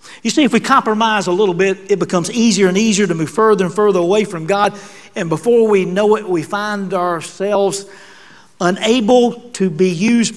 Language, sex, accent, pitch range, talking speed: English, male, American, 170-220 Hz, 190 wpm